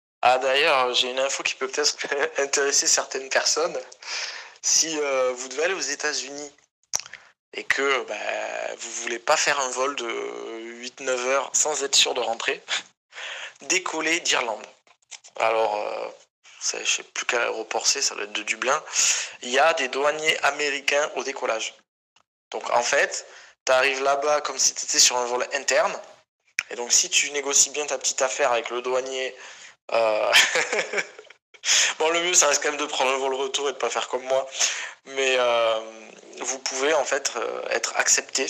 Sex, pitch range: male, 120-140 Hz